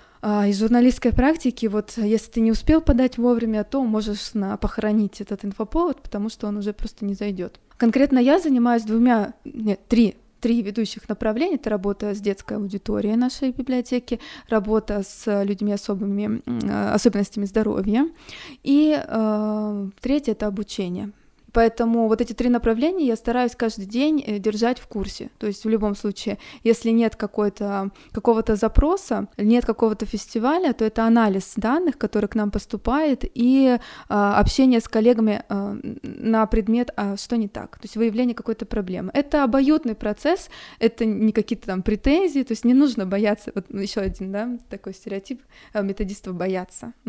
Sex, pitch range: female, 210-245 Hz